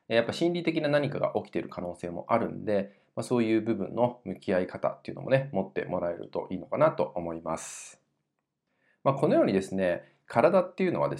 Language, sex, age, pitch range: Japanese, male, 20-39, 95-160 Hz